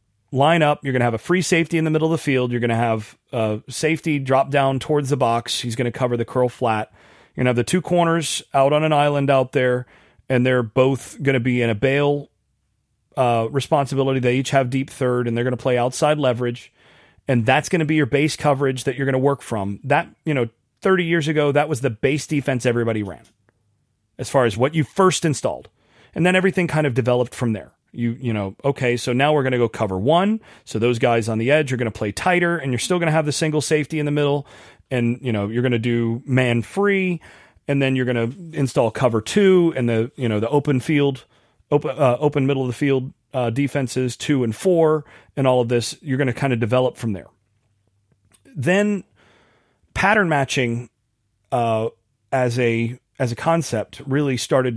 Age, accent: 30-49, American